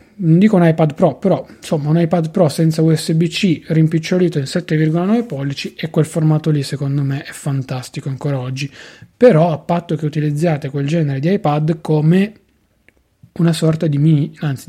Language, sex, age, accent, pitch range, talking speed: Italian, male, 20-39, native, 140-170 Hz, 170 wpm